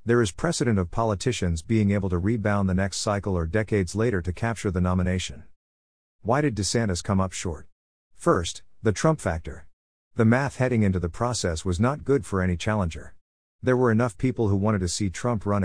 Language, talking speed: English, 195 wpm